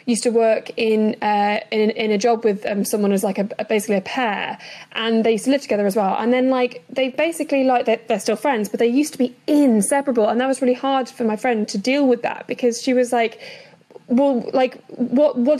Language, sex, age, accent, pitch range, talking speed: English, female, 10-29, British, 225-275 Hz, 245 wpm